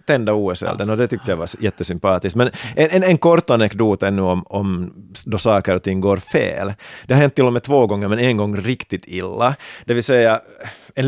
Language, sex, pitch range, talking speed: Swedish, male, 100-130 Hz, 215 wpm